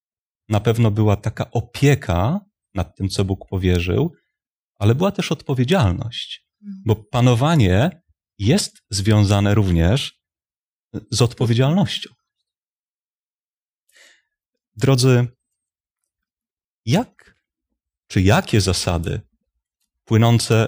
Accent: native